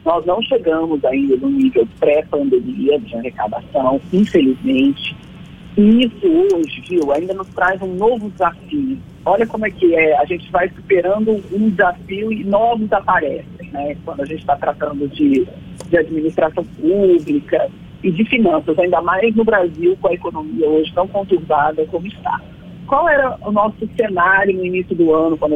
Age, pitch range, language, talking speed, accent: 40-59, 165-235 Hz, Portuguese, 160 wpm, Brazilian